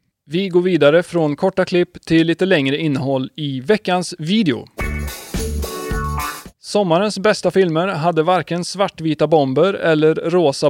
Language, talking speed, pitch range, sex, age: Swedish, 125 wpm, 145-180 Hz, male, 30-49